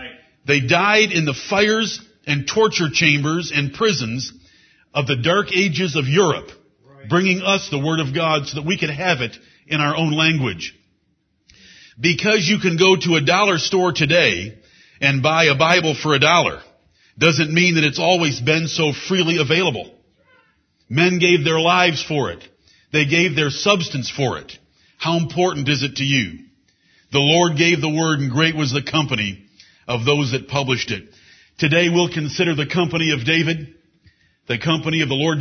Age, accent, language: 50-69, American, English